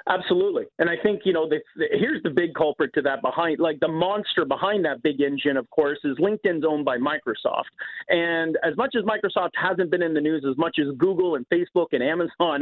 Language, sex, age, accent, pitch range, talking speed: English, male, 40-59, American, 165-275 Hz, 215 wpm